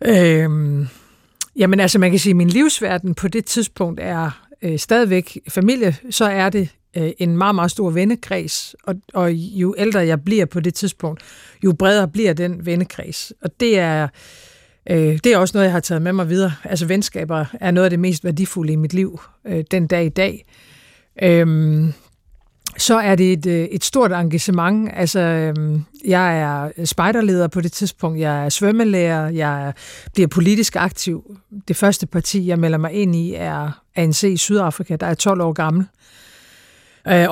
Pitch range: 165-195 Hz